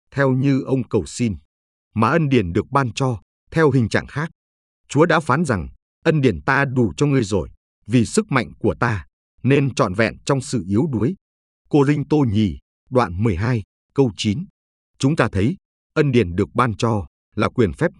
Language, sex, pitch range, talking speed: Vietnamese, male, 90-135 Hz, 190 wpm